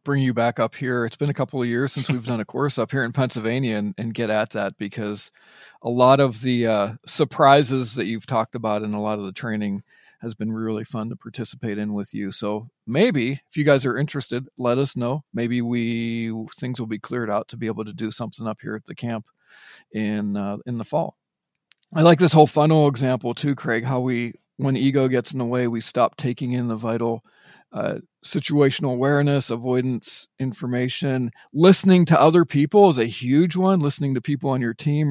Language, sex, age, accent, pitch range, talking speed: English, male, 40-59, American, 115-150 Hz, 215 wpm